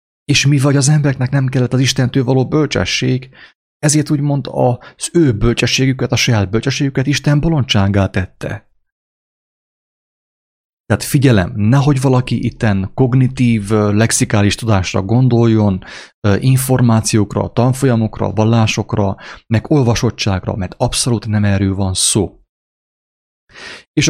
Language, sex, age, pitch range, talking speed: English, male, 30-49, 100-130 Hz, 110 wpm